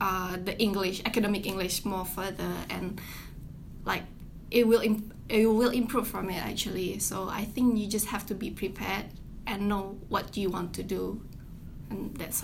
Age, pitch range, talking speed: 10-29, 195-225 Hz, 165 wpm